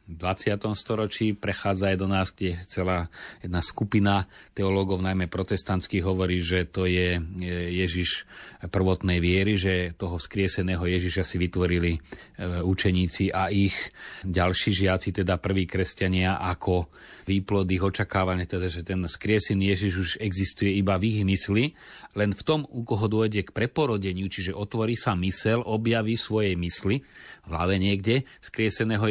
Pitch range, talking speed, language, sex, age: 95-105 Hz, 140 wpm, Slovak, male, 30-49